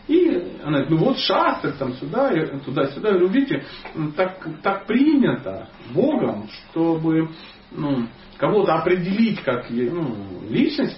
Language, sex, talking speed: Russian, male, 120 wpm